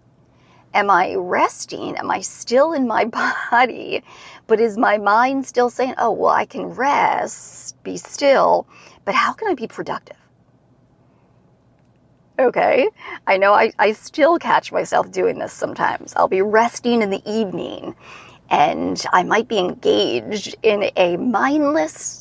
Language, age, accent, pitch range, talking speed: English, 40-59, American, 200-265 Hz, 145 wpm